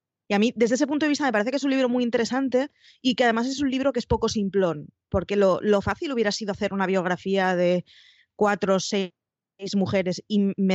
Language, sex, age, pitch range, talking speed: Spanish, female, 20-39, 190-240 Hz, 235 wpm